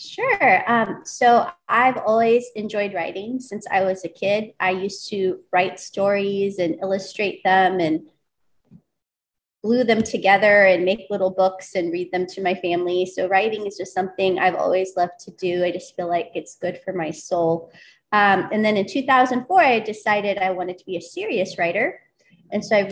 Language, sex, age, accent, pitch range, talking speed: English, female, 30-49, American, 185-225 Hz, 185 wpm